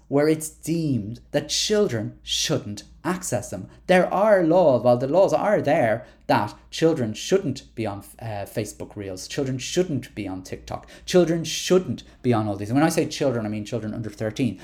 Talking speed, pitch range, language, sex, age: 185 wpm, 105-135 Hz, English, male, 30-49